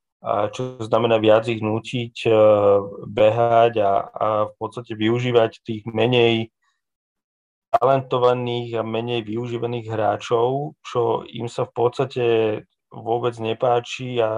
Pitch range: 110-130 Hz